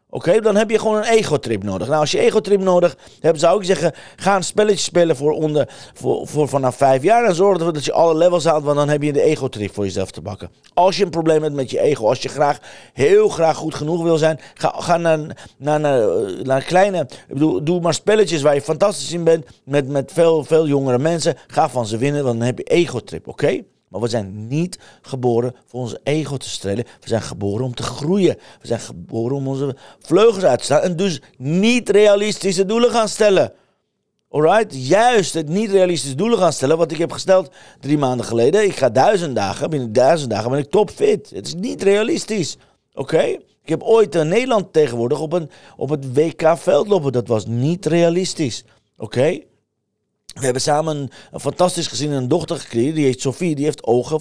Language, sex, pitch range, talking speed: Dutch, male, 135-185 Hz, 215 wpm